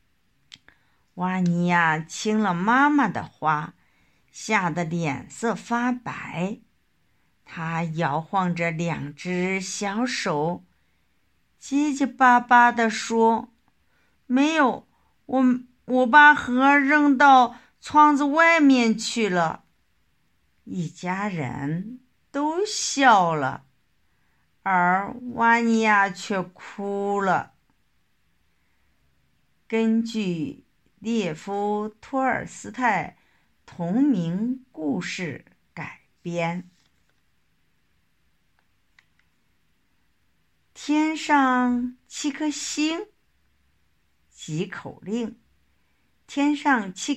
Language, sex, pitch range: Chinese, female, 180-280 Hz